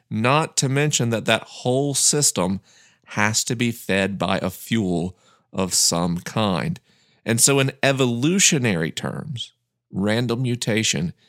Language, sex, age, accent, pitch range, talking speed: English, male, 40-59, American, 100-130 Hz, 130 wpm